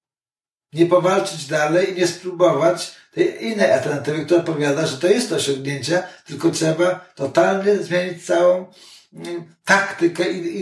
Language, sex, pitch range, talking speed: Polish, male, 135-175 Hz, 130 wpm